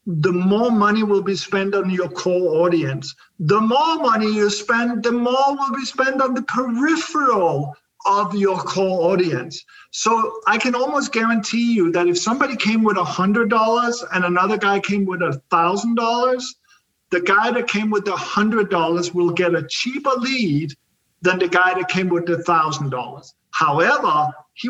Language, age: English, 50-69